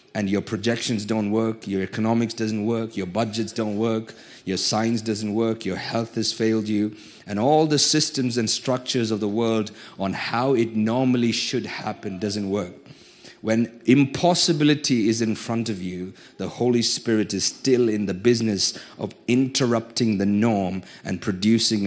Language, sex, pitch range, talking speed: English, male, 100-115 Hz, 165 wpm